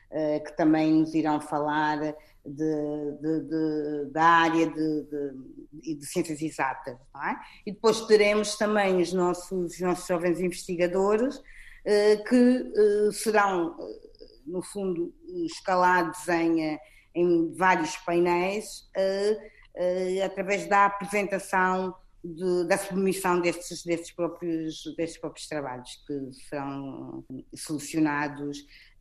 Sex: female